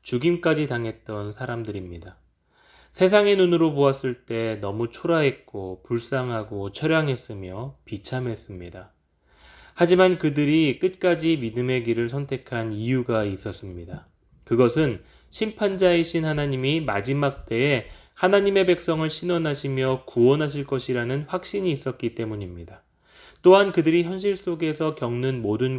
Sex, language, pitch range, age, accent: male, Korean, 115-165 Hz, 20-39, native